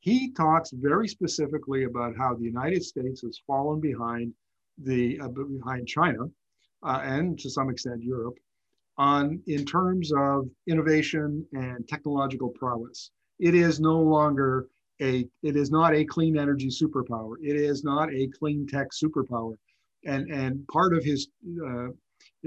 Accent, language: American, English